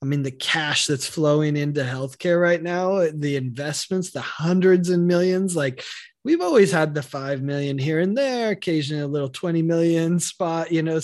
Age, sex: 20-39, male